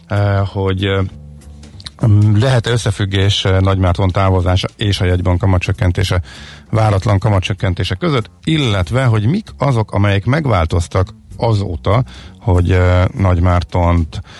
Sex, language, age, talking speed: male, Hungarian, 50-69, 90 wpm